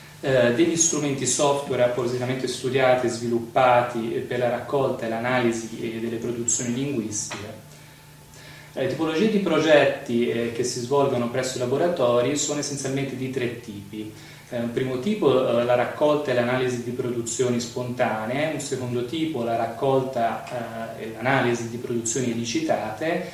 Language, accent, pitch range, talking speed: Italian, native, 120-145 Hz, 130 wpm